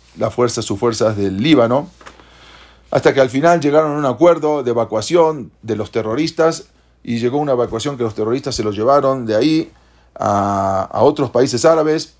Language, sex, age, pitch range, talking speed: English, male, 40-59, 105-140 Hz, 175 wpm